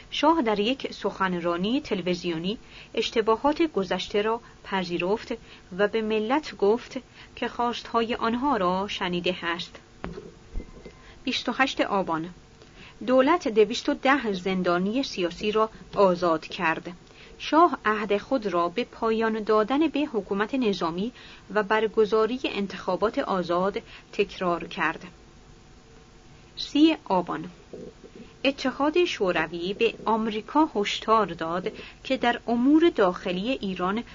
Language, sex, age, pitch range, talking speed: Persian, female, 30-49, 185-245 Hz, 105 wpm